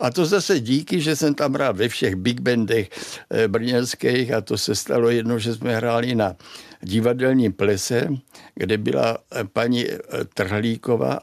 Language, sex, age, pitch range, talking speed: Czech, male, 60-79, 115-160 Hz, 150 wpm